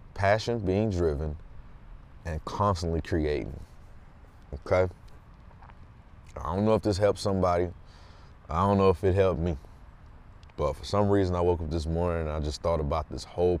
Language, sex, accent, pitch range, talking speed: English, male, American, 80-95 Hz, 165 wpm